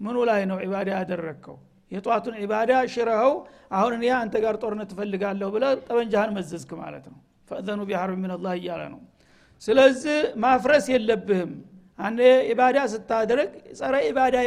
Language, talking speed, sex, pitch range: Amharic, 135 wpm, male, 210-255 Hz